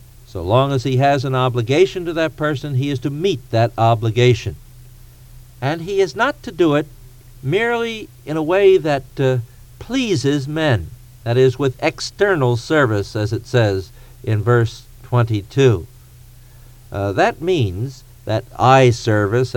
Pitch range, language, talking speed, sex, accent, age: 125-150 Hz, English, 145 wpm, male, American, 60-79